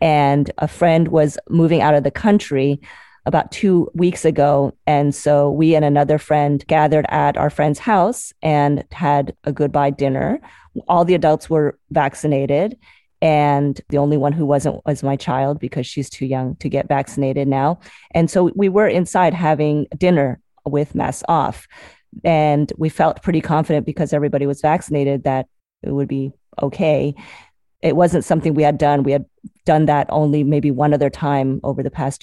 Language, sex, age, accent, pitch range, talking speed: English, female, 30-49, American, 140-165 Hz, 175 wpm